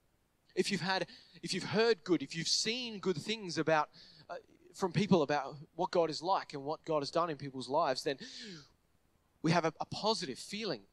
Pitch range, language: 140-180 Hz, English